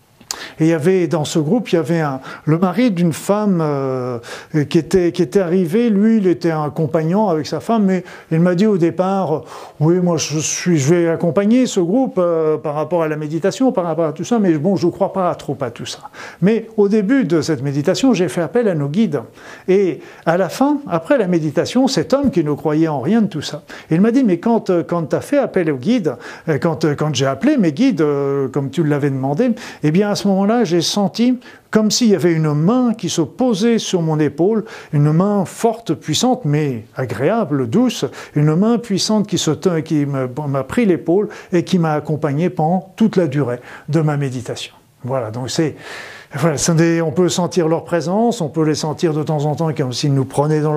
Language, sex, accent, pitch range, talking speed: French, male, French, 150-200 Hz, 225 wpm